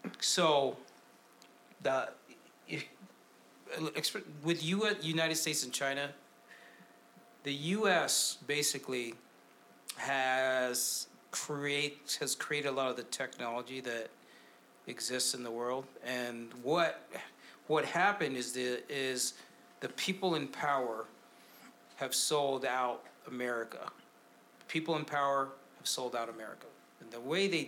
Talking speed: 115 wpm